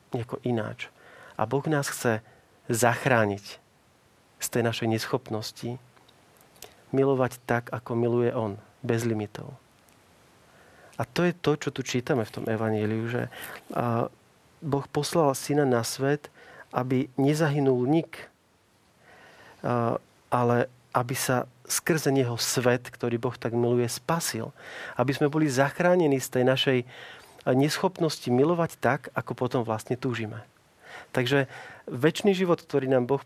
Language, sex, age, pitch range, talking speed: Slovak, male, 40-59, 120-150 Hz, 125 wpm